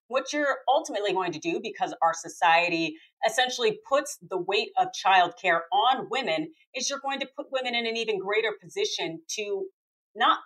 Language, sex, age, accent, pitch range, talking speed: English, female, 40-59, American, 185-295 Hz, 180 wpm